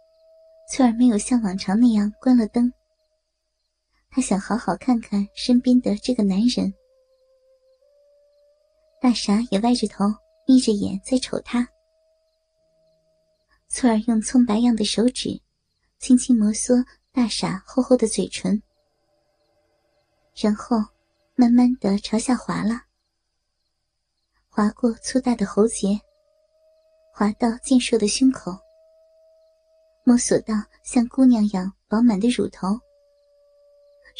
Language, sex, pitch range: Chinese, male, 215-290 Hz